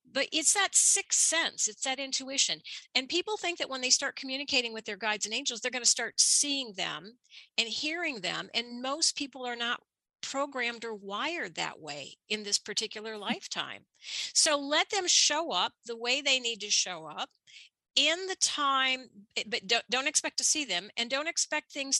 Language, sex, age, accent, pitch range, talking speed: English, female, 50-69, American, 210-275 Hz, 190 wpm